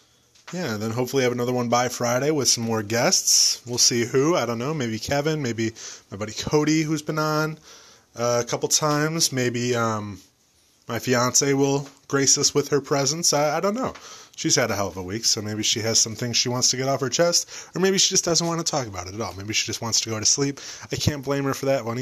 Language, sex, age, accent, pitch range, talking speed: English, male, 20-39, American, 115-145 Hz, 255 wpm